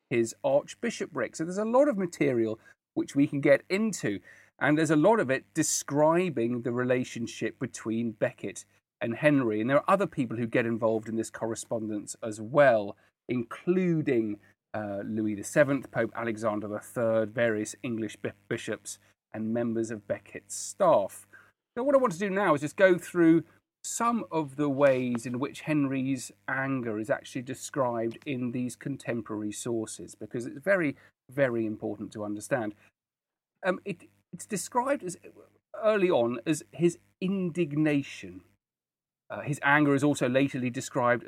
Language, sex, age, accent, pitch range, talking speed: English, male, 40-59, British, 115-165 Hz, 150 wpm